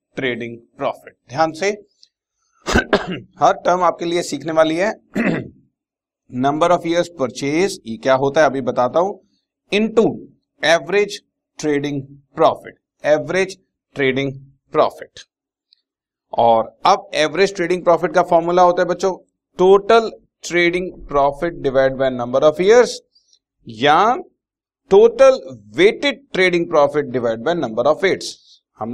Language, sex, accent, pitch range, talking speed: Hindi, male, native, 135-185 Hz, 120 wpm